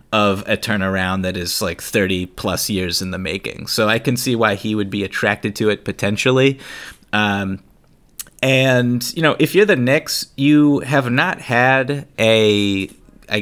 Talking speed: 170 wpm